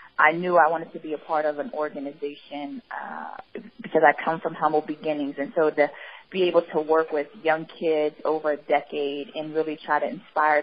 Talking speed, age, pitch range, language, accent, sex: 205 wpm, 20-39, 150-165 Hz, English, American, female